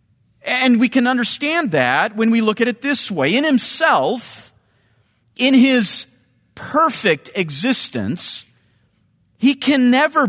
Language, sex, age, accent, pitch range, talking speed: English, male, 40-59, American, 170-255 Hz, 120 wpm